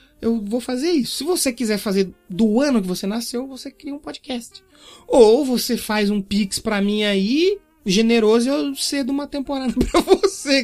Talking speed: 180 wpm